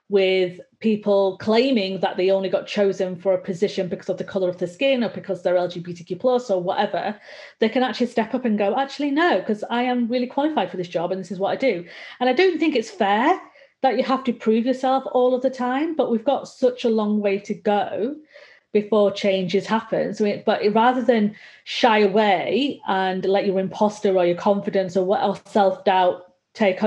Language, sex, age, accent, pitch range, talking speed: English, female, 30-49, British, 195-250 Hz, 210 wpm